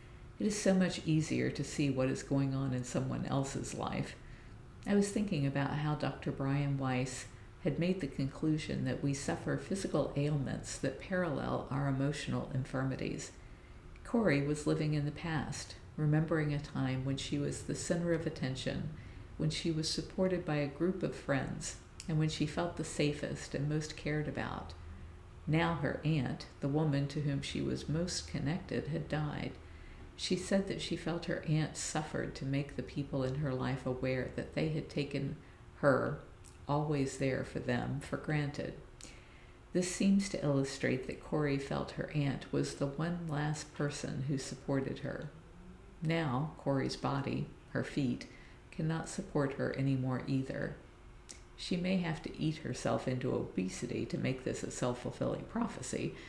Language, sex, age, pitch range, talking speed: English, female, 50-69, 130-155 Hz, 165 wpm